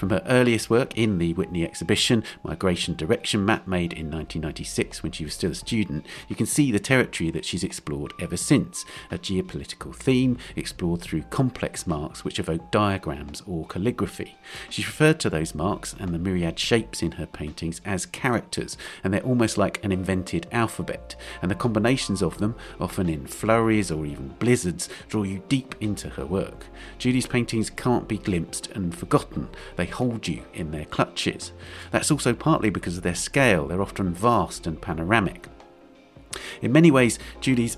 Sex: male